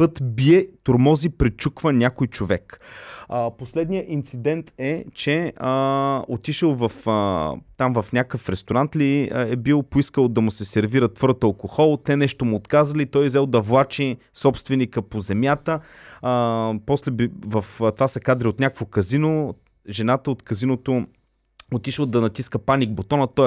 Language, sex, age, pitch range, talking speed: Bulgarian, male, 30-49, 115-145 Hz, 150 wpm